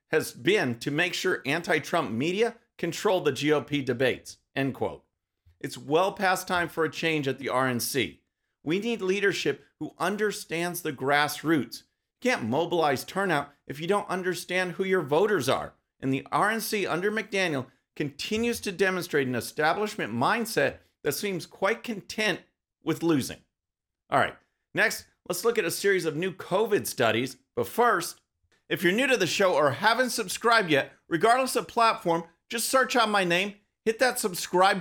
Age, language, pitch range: 40-59, English, 150-215 Hz